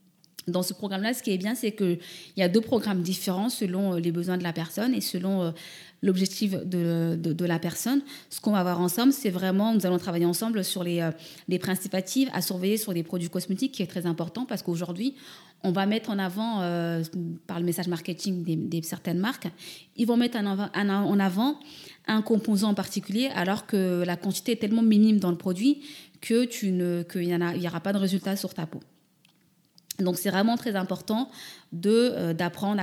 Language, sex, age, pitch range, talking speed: French, female, 20-39, 175-210 Hz, 195 wpm